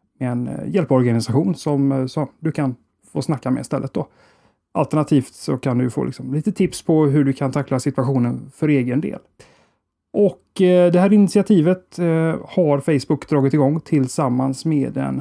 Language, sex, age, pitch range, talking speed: Swedish, male, 30-49, 135-175 Hz, 160 wpm